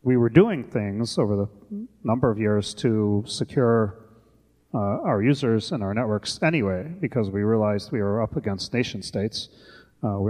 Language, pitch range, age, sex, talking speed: English, 100-125 Hz, 30-49, male, 170 wpm